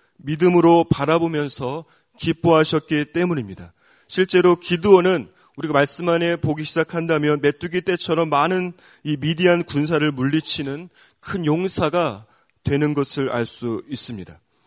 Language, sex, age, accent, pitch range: Korean, male, 30-49, native, 150-185 Hz